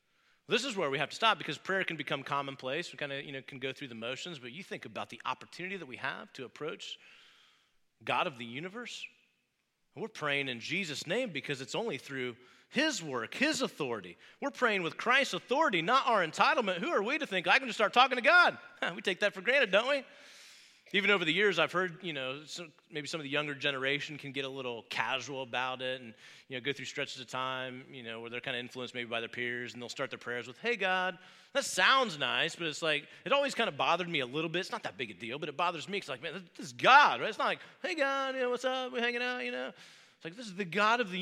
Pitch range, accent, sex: 135-225 Hz, American, male